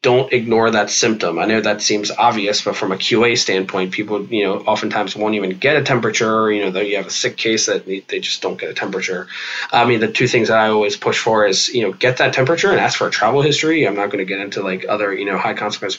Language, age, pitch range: English, 20-39, 105-130 Hz